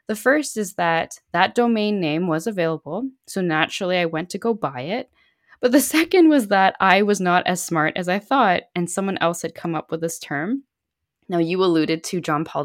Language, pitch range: English, 155-180 Hz